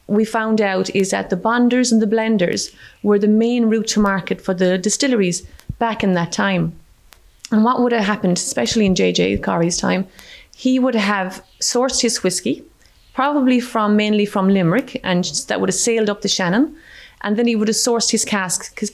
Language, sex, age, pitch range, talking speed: English, female, 30-49, 190-230 Hz, 195 wpm